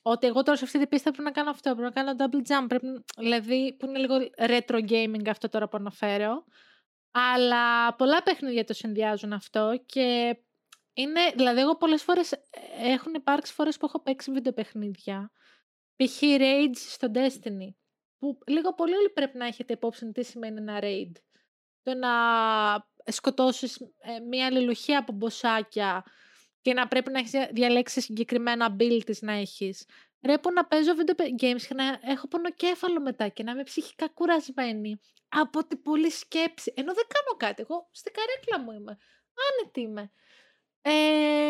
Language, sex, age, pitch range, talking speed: Greek, female, 20-39, 235-320 Hz, 165 wpm